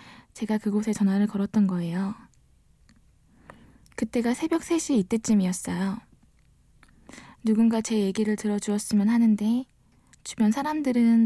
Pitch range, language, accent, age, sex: 200-240 Hz, Korean, native, 20-39, female